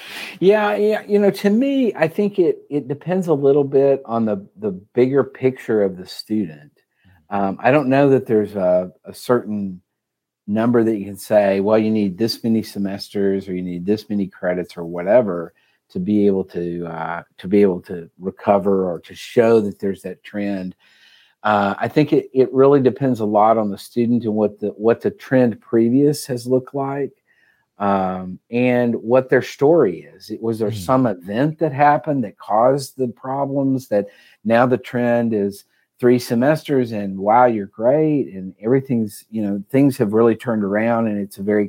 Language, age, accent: English, 50-69, American